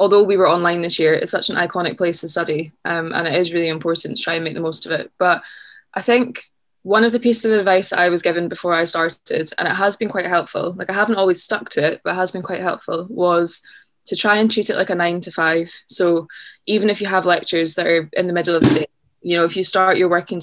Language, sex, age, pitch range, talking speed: English, female, 20-39, 170-190 Hz, 275 wpm